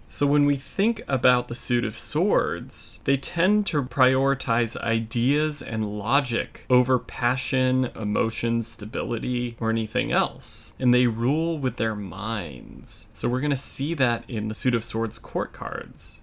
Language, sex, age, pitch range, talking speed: English, male, 30-49, 110-140 Hz, 155 wpm